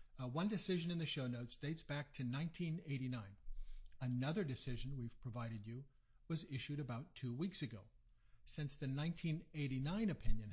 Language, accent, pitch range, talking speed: English, American, 120-160 Hz, 150 wpm